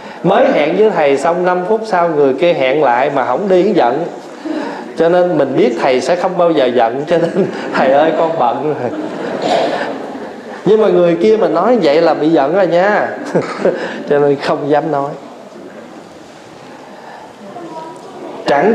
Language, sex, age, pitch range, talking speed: Vietnamese, male, 20-39, 165-235 Hz, 160 wpm